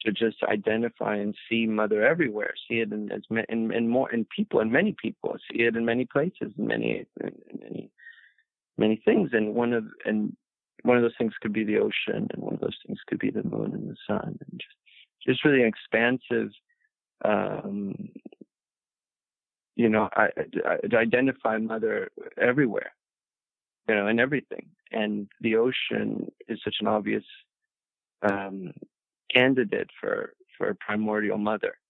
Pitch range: 105-140 Hz